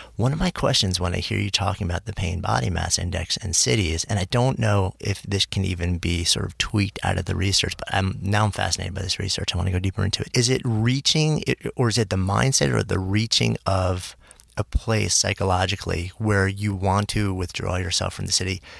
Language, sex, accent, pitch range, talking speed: English, male, American, 90-105 Hz, 235 wpm